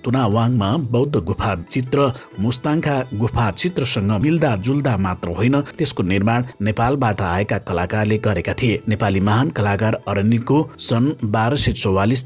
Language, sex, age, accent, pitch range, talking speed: English, male, 60-79, Indian, 105-135 Hz, 130 wpm